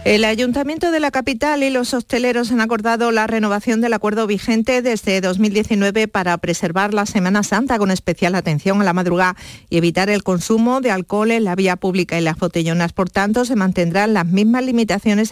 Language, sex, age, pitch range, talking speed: Spanish, female, 50-69, 180-220 Hz, 190 wpm